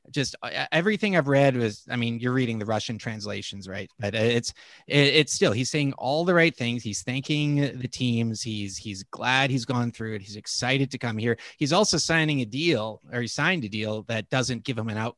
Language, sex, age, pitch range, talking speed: English, male, 30-49, 110-140 Hz, 215 wpm